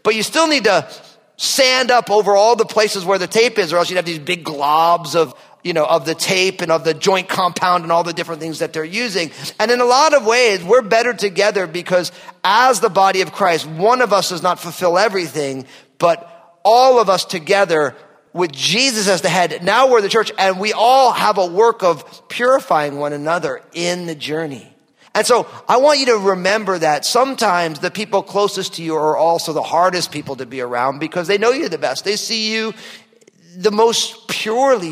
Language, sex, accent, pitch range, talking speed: English, male, American, 165-225 Hz, 215 wpm